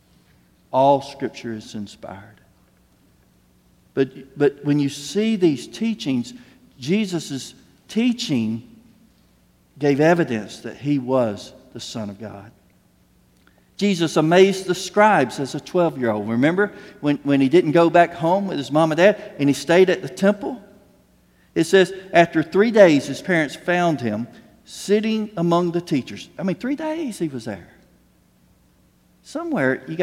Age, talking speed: 50-69, 140 wpm